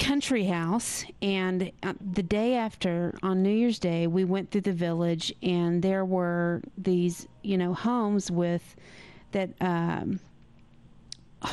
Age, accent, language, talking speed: 40-59, American, English, 130 wpm